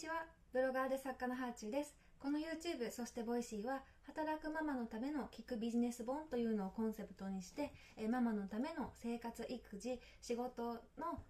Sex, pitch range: female, 215-275 Hz